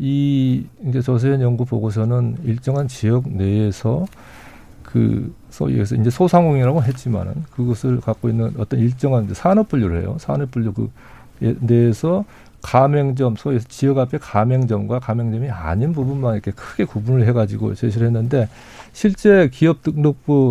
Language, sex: Korean, male